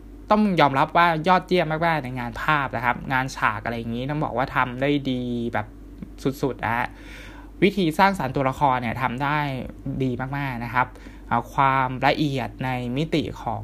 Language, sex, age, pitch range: Thai, male, 20-39, 120-155 Hz